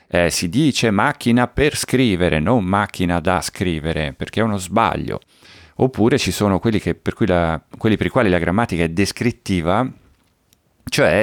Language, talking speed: Italian, 145 wpm